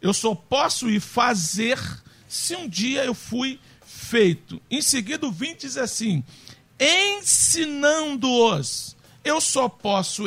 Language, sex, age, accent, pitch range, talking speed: Portuguese, male, 50-69, Brazilian, 165-265 Hz, 125 wpm